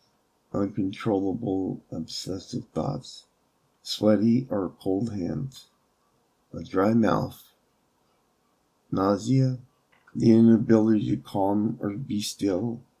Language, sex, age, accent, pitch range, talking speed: English, male, 50-69, American, 100-125 Hz, 85 wpm